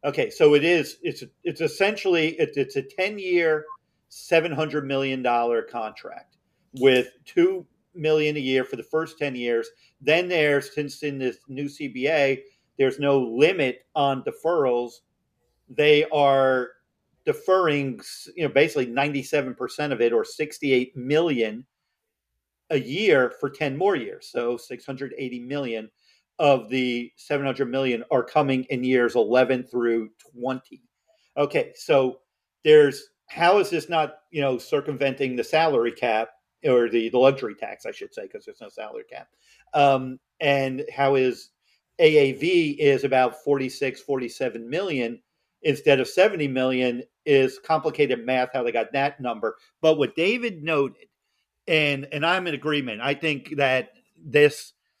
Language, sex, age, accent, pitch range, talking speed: English, male, 40-59, American, 130-160 Hz, 145 wpm